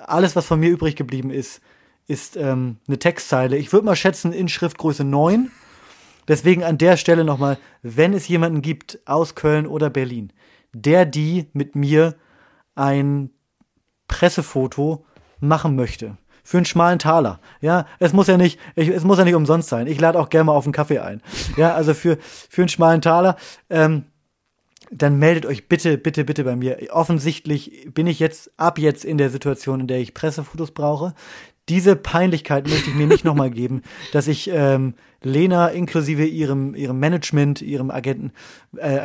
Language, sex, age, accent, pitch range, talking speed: German, male, 30-49, German, 145-170 Hz, 170 wpm